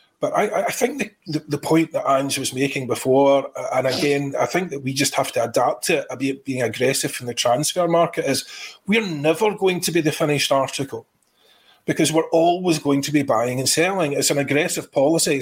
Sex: male